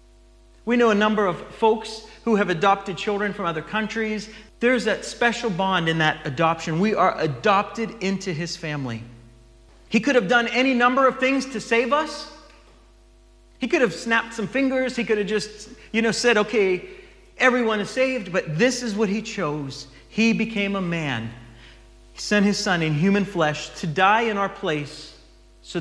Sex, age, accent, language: male, 40-59, American, English